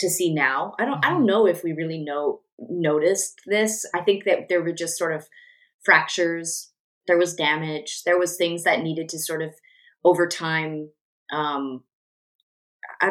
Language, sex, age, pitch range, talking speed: English, female, 20-39, 155-185 Hz, 175 wpm